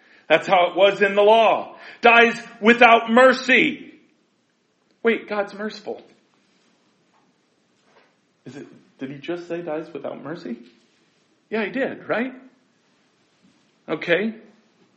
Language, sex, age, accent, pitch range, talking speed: English, male, 50-69, American, 220-270 Hz, 110 wpm